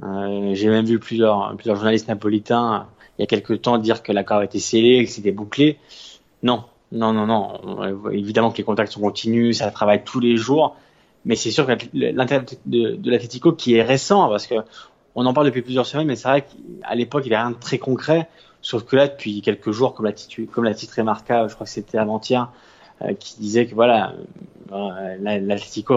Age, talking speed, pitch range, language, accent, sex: 20-39, 215 wpm, 105-130 Hz, French, French, male